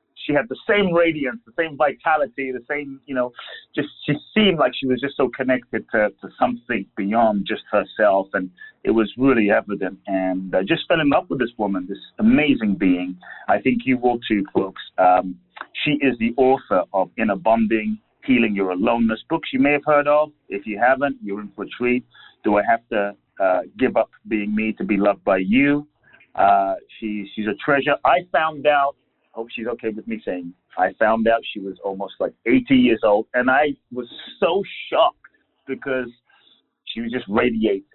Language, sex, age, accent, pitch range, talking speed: English, male, 30-49, American, 95-130 Hz, 195 wpm